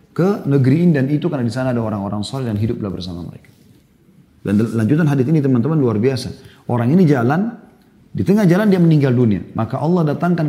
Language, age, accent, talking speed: Indonesian, 30-49, native, 190 wpm